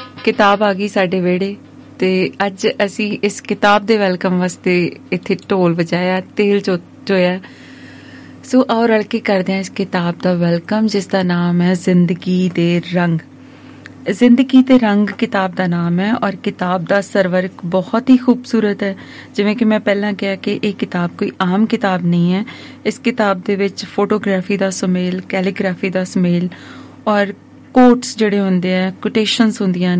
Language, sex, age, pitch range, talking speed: Punjabi, female, 30-49, 185-215 Hz, 160 wpm